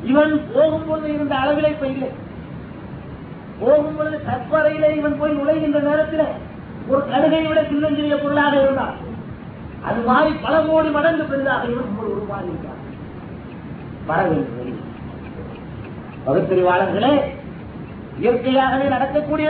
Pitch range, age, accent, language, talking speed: 270-315 Hz, 30-49, native, Tamil, 90 wpm